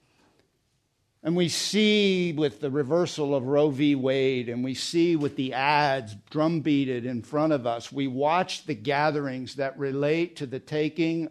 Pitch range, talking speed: 135-190 Hz, 160 wpm